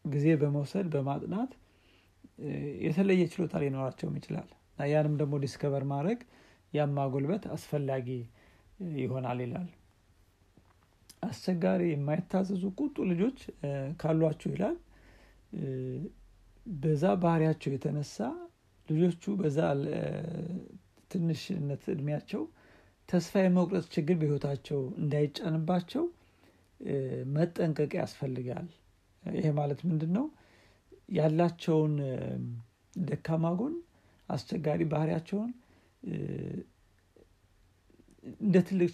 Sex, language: male, Amharic